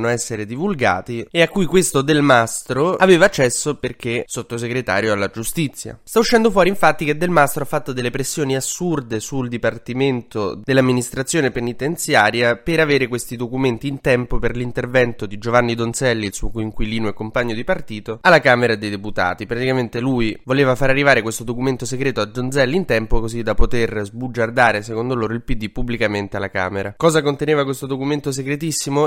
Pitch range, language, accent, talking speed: 115-140 Hz, Italian, native, 165 wpm